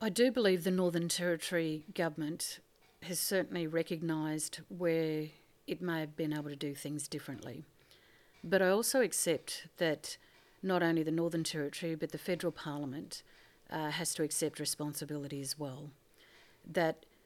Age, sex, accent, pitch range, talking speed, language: 50-69, female, Australian, 150-175 Hz, 145 wpm, English